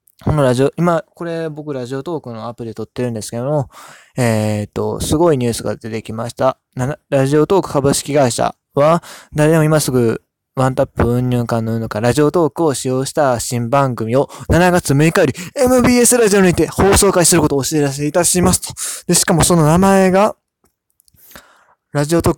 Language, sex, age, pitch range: Japanese, male, 20-39, 125-175 Hz